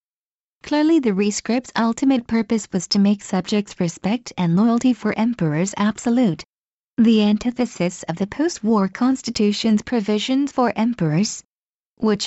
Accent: American